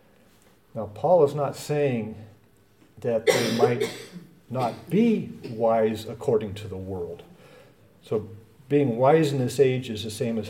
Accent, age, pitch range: American, 50-69, 105-135 Hz